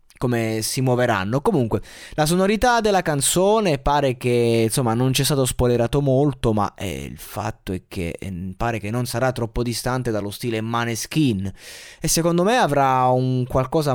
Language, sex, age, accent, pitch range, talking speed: Italian, male, 20-39, native, 105-140 Hz, 170 wpm